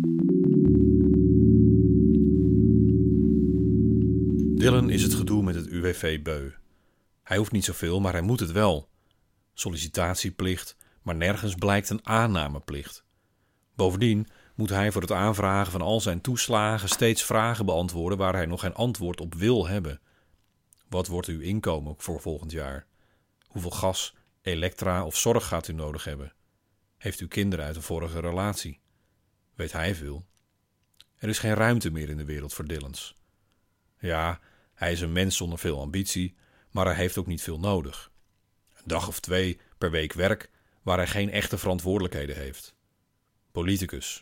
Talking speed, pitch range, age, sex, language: 150 wpm, 85-100 Hz, 40-59, male, Dutch